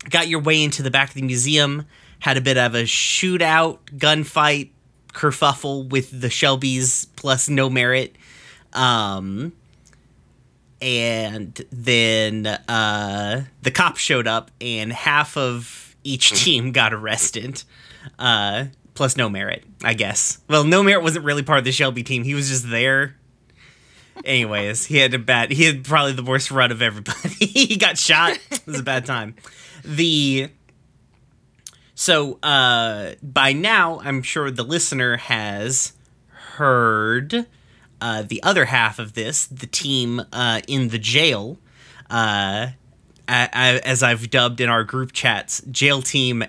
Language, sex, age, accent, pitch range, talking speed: English, male, 30-49, American, 120-145 Hz, 145 wpm